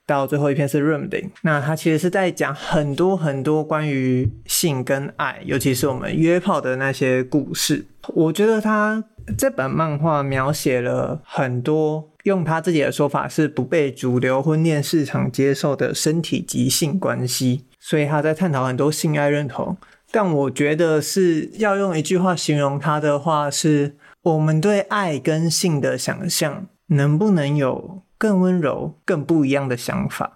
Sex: male